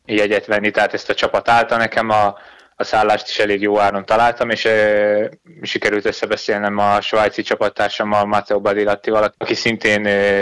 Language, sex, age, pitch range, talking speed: Hungarian, male, 20-39, 105-110 Hz, 165 wpm